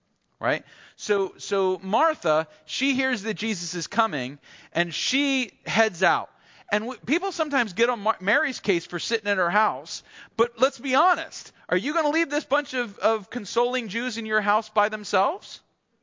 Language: English